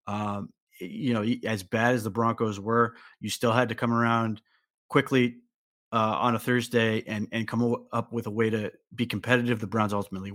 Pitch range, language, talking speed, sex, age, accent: 110-125 Hz, English, 190 wpm, male, 30-49, American